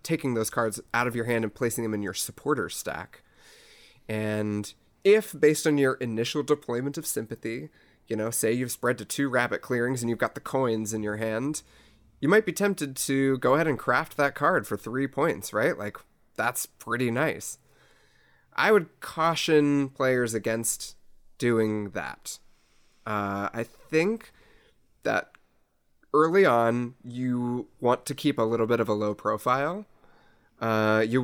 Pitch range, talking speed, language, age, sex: 105-135 Hz, 165 wpm, English, 30-49, male